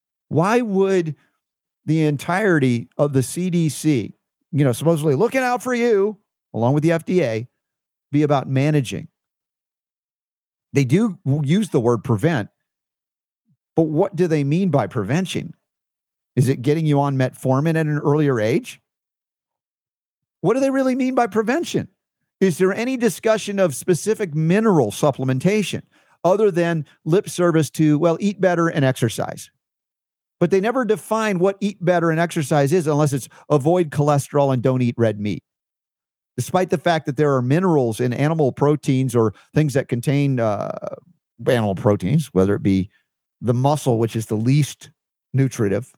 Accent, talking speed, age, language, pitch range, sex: American, 150 wpm, 50-69, English, 125-175 Hz, male